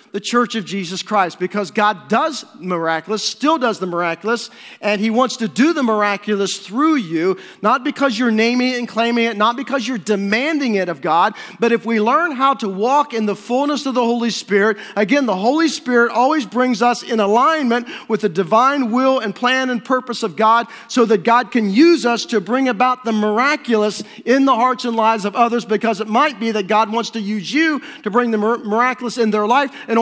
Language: English